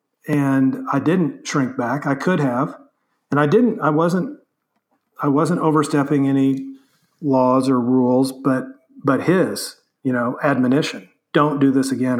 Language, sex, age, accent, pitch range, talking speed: English, male, 40-59, American, 130-155 Hz, 150 wpm